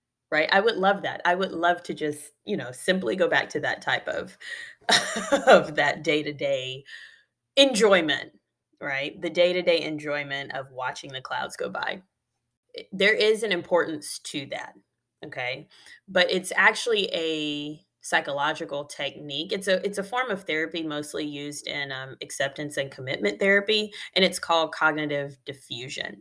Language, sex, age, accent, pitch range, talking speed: English, female, 20-39, American, 150-195 Hz, 160 wpm